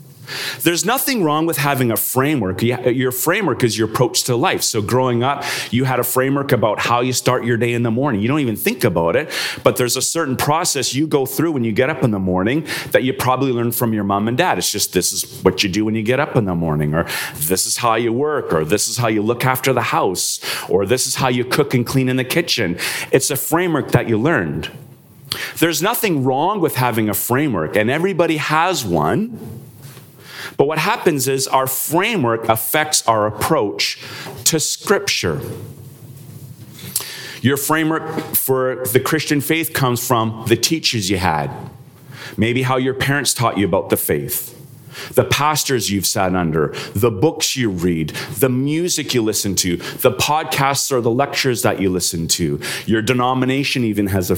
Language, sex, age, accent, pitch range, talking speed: English, male, 40-59, American, 115-145 Hz, 195 wpm